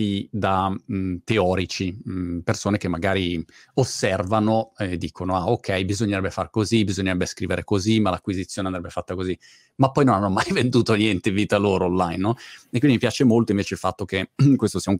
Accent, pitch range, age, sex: native, 90-110 Hz, 30-49, male